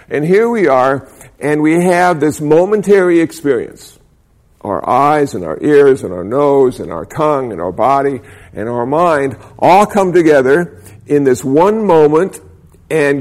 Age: 50-69